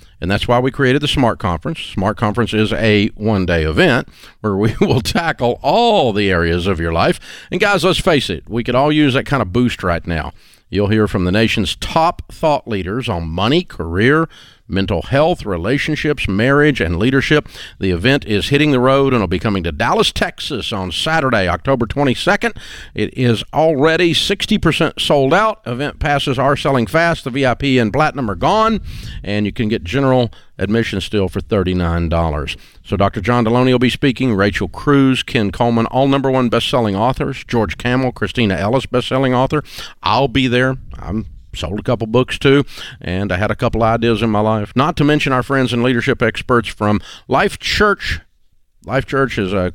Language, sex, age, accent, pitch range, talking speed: English, male, 50-69, American, 100-135 Hz, 185 wpm